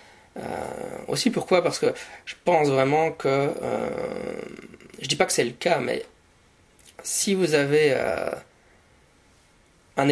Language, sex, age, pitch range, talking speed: French, male, 20-39, 125-150 Hz, 135 wpm